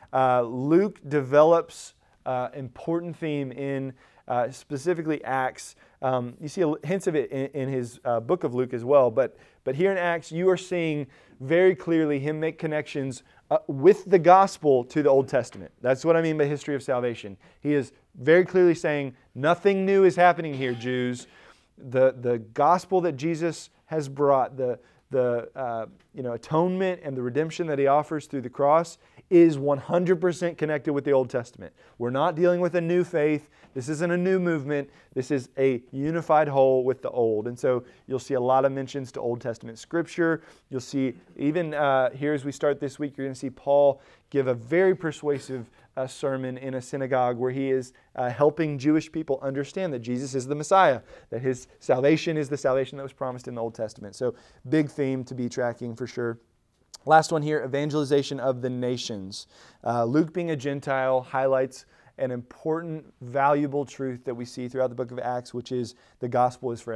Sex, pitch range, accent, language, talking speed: male, 125-155 Hz, American, English, 195 wpm